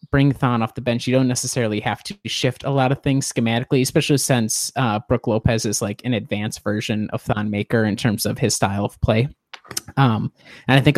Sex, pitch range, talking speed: male, 105-125 Hz, 220 wpm